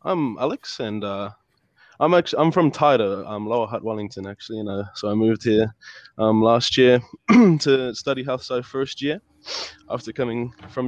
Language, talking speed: English, 190 wpm